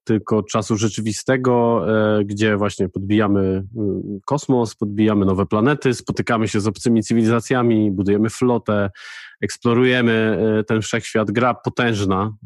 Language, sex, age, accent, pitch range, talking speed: Polish, male, 20-39, native, 105-125 Hz, 105 wpm